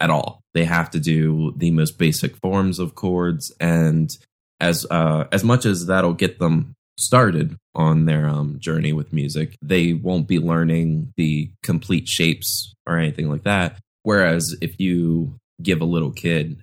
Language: English